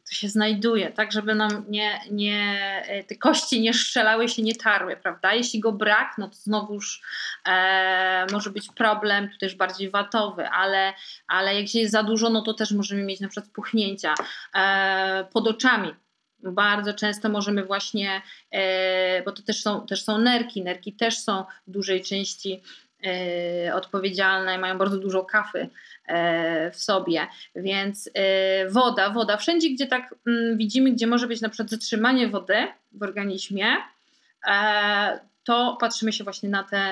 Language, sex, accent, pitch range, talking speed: Polish, female, native, 195-225 Hz, 155 wpm